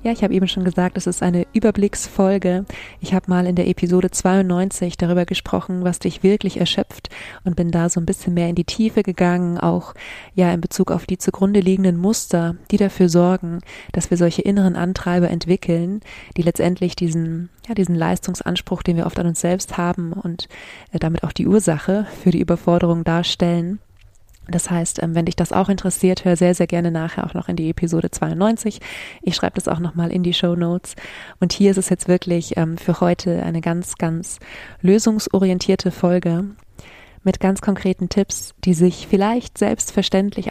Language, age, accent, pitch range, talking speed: German, 20-39, German, 175-190 Hz, 180 wpm